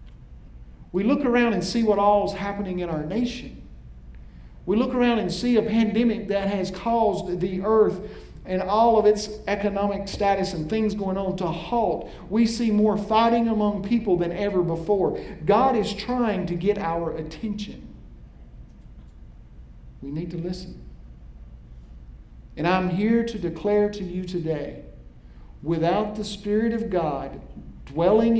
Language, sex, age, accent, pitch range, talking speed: English, male, 50-69, American, 140-205 Hz, 150 wpm